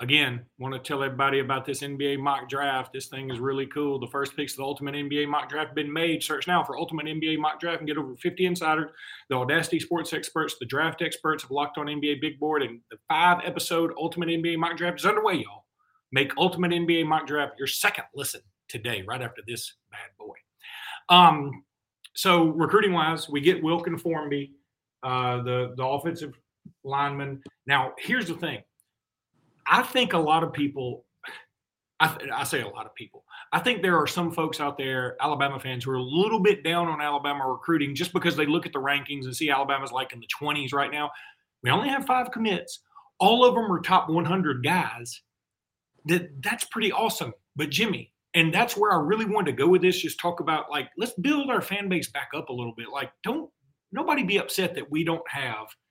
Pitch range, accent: 140-175 Hz, American